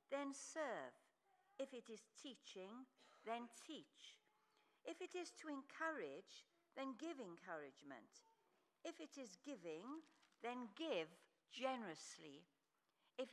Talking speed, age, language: 105 wpm, 60-79, English